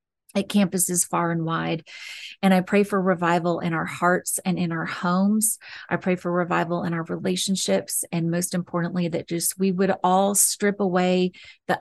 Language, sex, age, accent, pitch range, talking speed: English, female, 30-49, American, 170-190 Hz, 180 wpm